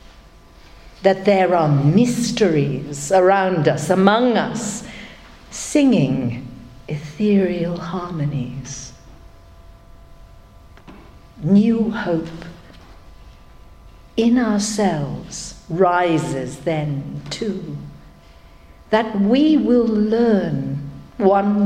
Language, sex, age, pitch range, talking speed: English, female, 60-79, 150-230 Hz, 65 wpm